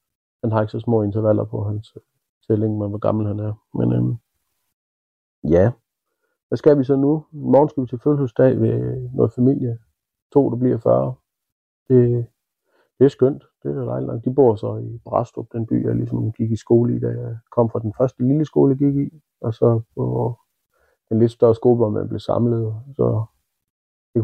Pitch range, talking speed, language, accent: 105-125 Hz, 190 wpm, Danish, native